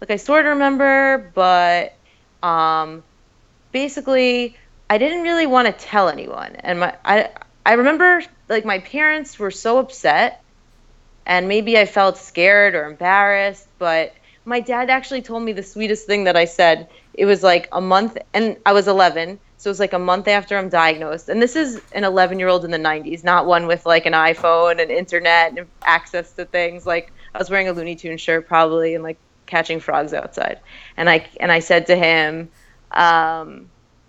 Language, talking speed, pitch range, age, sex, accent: English, 185 wpm, 165-210 Hz, 20-39, female, American